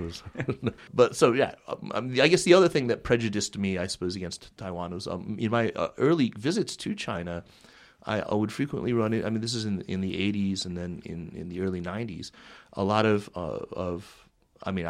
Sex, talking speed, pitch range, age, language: male, 210 wpm, 90-115 Hz, 30-49, English